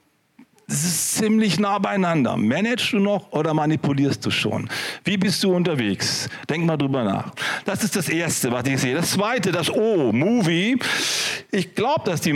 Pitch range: 165-210 Hz